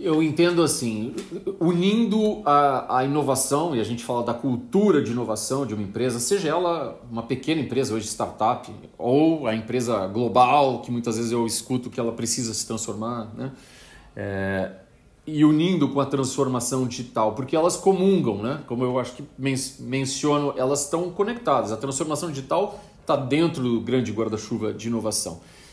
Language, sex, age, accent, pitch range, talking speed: Portuguese, male, 40-59, Brazilian, 120-170 Hz, 165 wpm